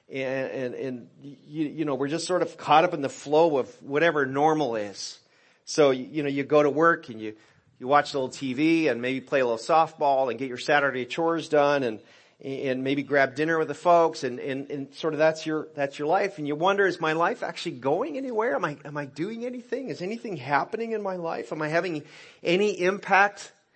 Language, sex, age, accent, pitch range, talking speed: English, male, 40-59, American, 140-170 Hz, 225 wpm